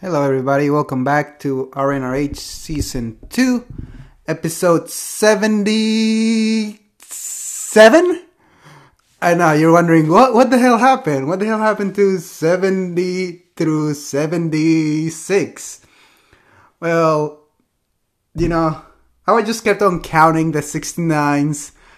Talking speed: 110 wpm